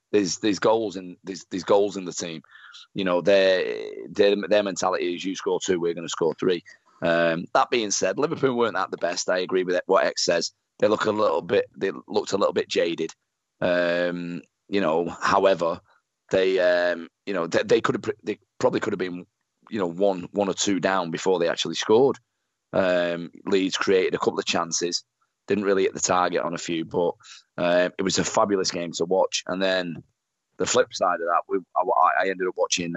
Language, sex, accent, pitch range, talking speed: English, male, British, 85-100 Hz, 210 wpm